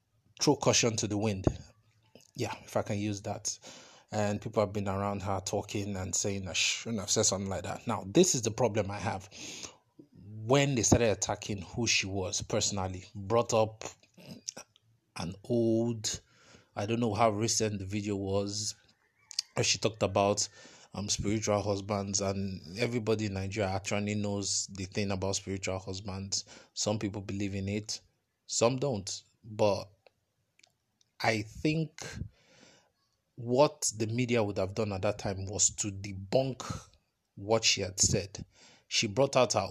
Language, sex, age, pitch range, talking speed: English, male, 20-39, 100-115 Hz, 155 wpm